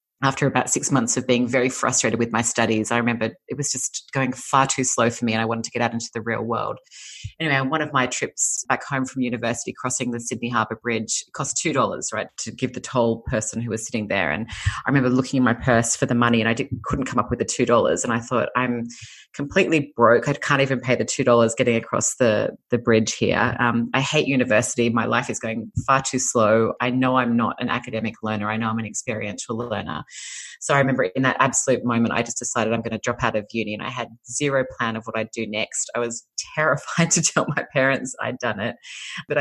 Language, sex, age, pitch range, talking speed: English, female, 30-49, 115-130 Hz, 240 wpm